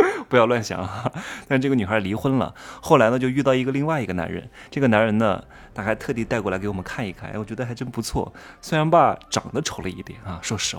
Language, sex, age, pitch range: Chinese, male, 20-39, 100-135 Hz